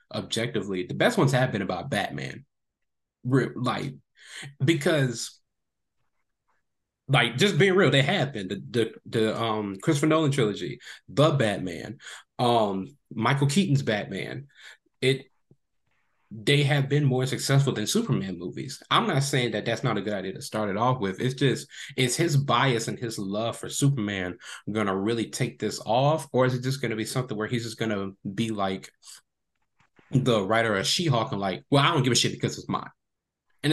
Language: English